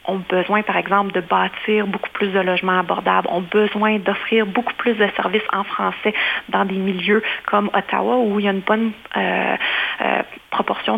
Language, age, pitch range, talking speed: French, 30-49, 190-220 Hz, 185 wpm